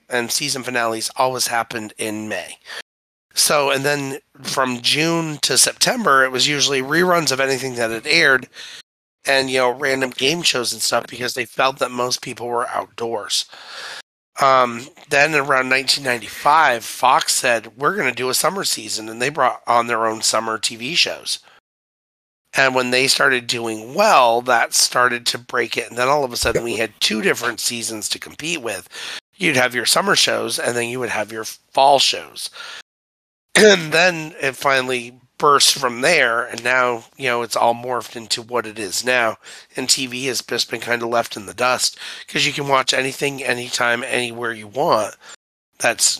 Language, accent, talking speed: English, American, 180 wpm